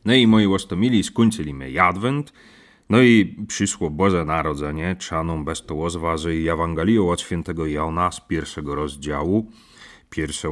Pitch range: 80-110 Hz